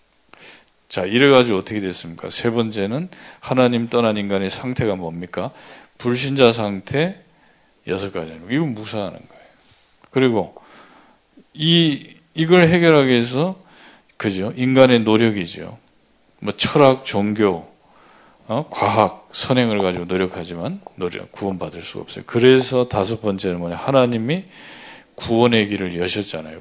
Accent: native